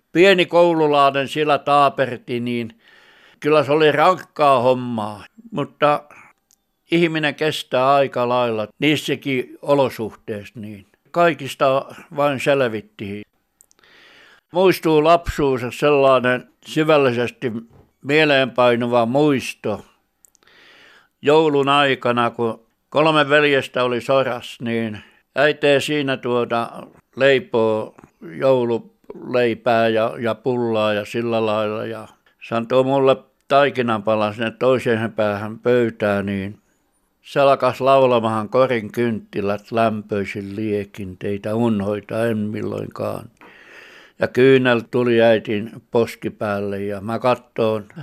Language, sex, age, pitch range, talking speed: Finnish, male, 60-79, 110-140 Hz, 90 wpm